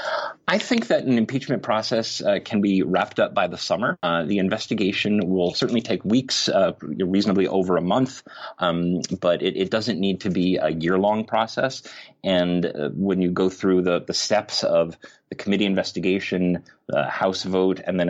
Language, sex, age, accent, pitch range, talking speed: English, male, 30-49, American, 90-110 Hz, 185 wpm